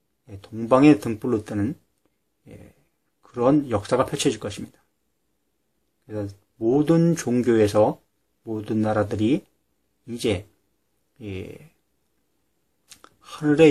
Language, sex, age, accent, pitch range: Korean, male, 30-49, native, 105-145 Hz